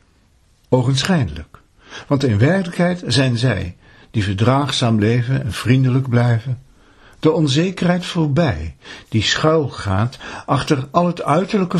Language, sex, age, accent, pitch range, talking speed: Dutch, male, 60-79, Dutch, 110-155 Hz, 105 wpm